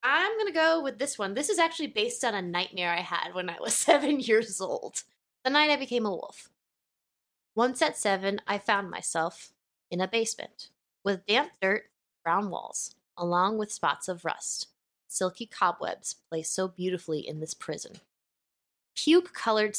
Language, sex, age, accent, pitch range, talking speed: English, female, 20-39, American, 170-220 Hz, 170 wpm